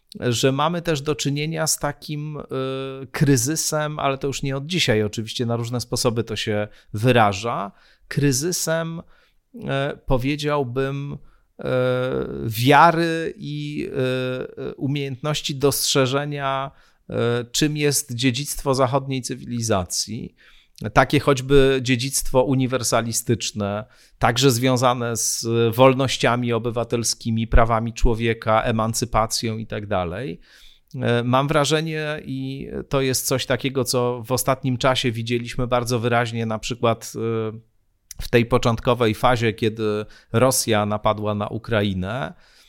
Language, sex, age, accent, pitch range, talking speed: Polish, male, 40-59, native, 115-140 Hz, 100 wpm